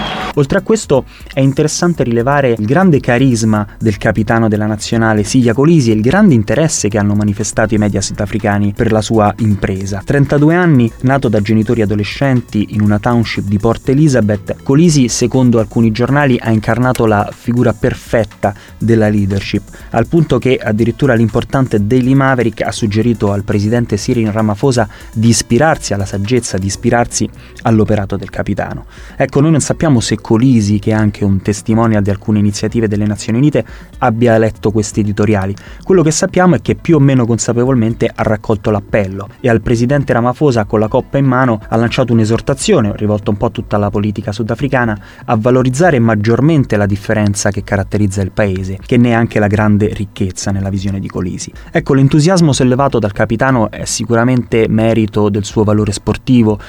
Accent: native